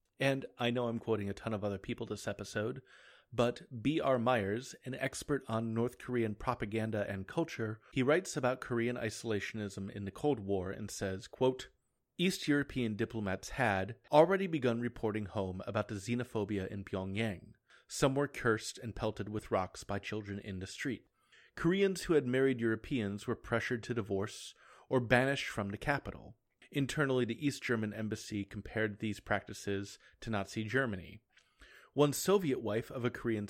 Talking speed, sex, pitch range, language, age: 165 wpm, male, 105-135 Hz, English, 30-49